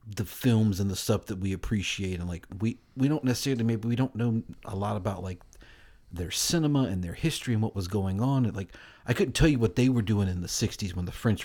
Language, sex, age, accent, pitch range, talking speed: English, male, 40-59, American, 95-115 Hz, 250 wpm